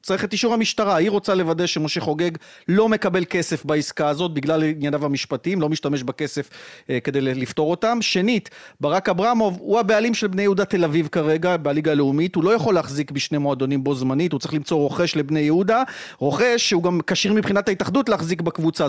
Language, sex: Hebrew, male